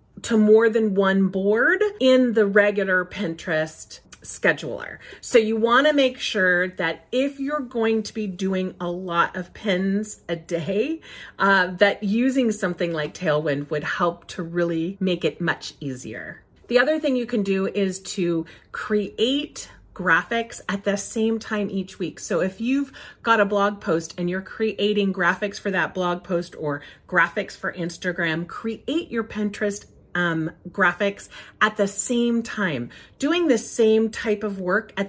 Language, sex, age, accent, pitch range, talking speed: English, female, 40-59, American, 185-230 Hz, 160 wpm